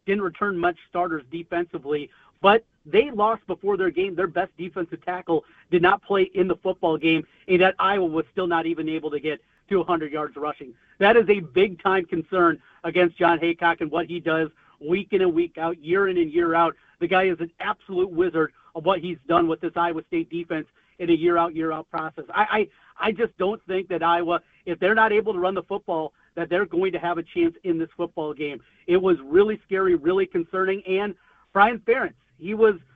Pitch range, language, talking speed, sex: 170-215 Hz, English, 210 wpm, male